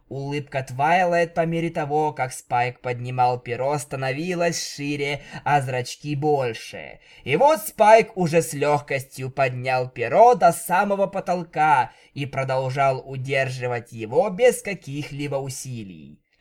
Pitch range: 130-185 Hz